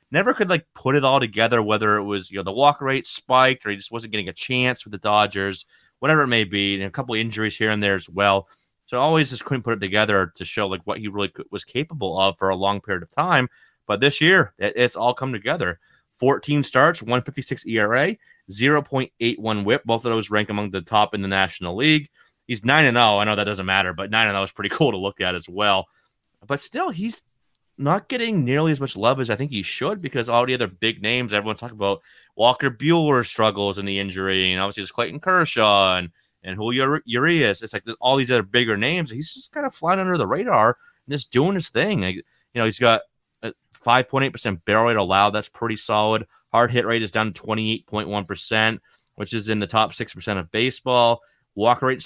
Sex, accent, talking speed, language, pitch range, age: male, American, 225 wpm, English, 105-135 Hz, 30-49